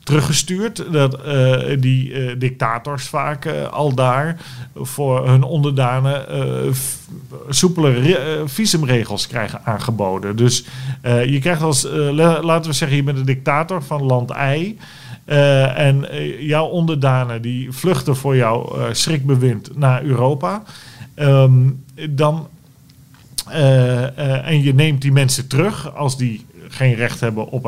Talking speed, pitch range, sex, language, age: 140 wpm, 130-160 Hz, male, Dutch, 40-59